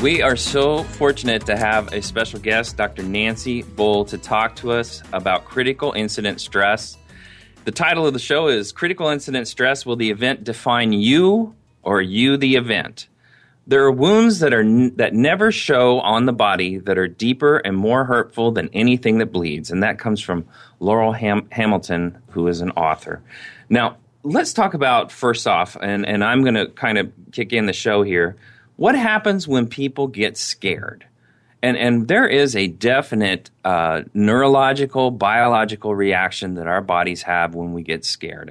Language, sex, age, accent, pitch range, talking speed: English, male, 30-49, American, 95-130 Hz, 175 wpm